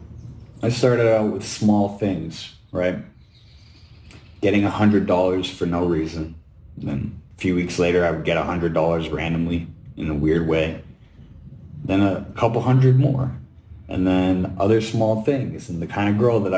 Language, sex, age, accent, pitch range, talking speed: English, male, 30-49, American, 85-105 Hz, 150 wpm